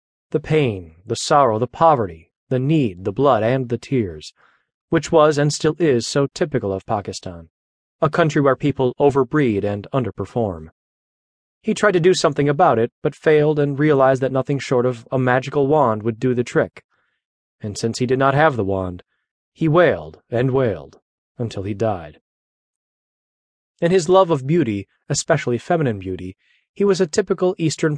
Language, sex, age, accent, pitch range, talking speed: English, male, 30-49, American, 110-155 Hz, 170 wpm